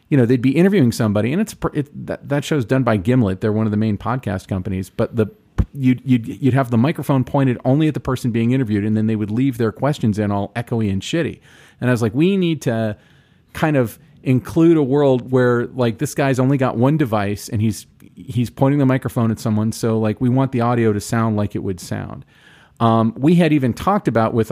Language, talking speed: English, 235 wpm